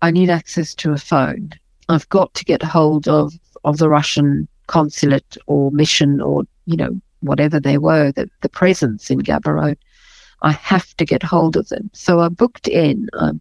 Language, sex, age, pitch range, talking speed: English, female, 50-69, 150-180 Hz, 185 wpm